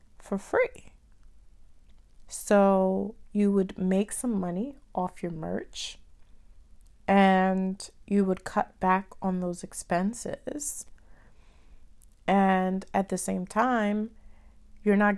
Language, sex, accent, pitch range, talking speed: English, female, American, 185-215 Hz, 105 wpm